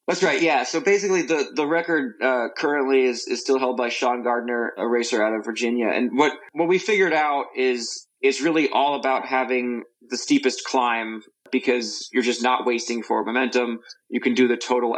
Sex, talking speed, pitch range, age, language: male, 195 wpm, 120-135 Hz, 20-39, English